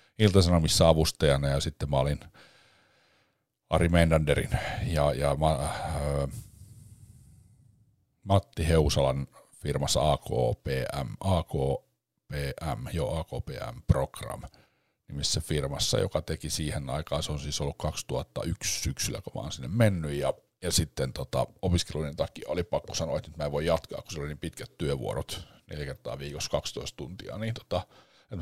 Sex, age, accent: male, 50-69, native